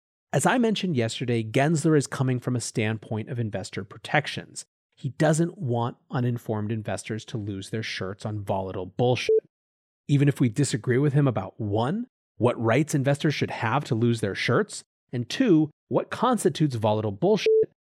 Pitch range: 115-155 Hz